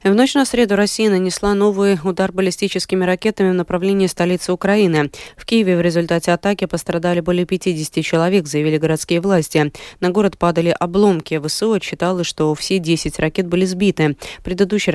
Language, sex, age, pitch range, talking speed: Russian, female, 20-39, 160-195 Hz, 155 wpm